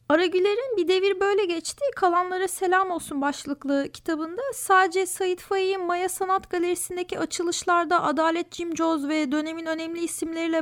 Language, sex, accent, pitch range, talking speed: Turkish, female, native, 275-355 Hz, 140 wpm